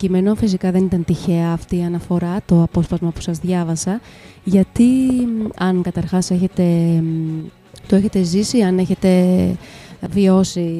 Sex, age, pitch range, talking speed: female, 20-39, 170-195 Hz, 120 wpm